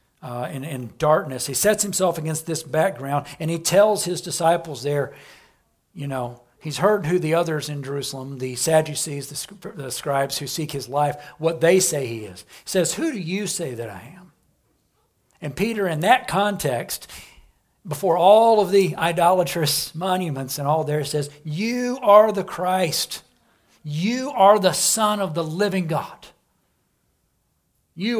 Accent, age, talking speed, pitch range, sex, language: American, 60-79, 160 wpm, 135-180 Hz, male, English